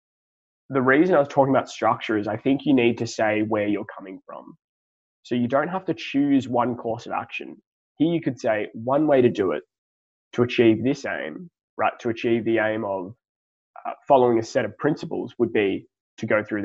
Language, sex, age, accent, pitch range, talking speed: English, male, 20-39, Australian, 110-130 Hz, 210 wpm